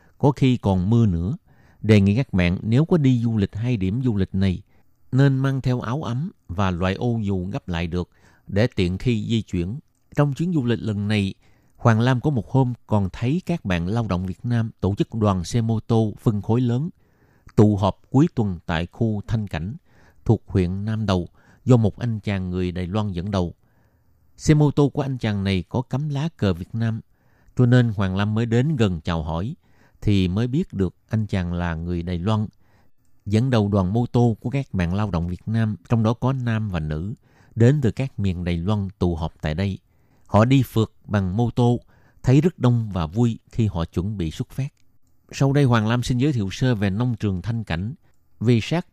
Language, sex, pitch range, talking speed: Vietnamese, male, 95-125 Hz, 215 wpm